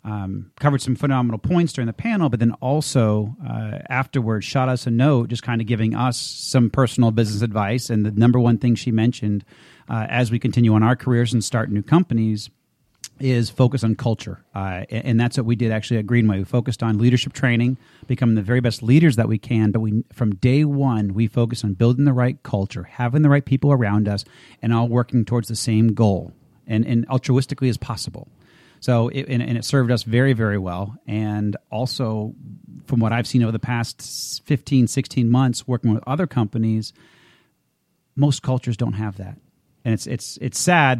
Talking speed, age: 200 wpm, 40-59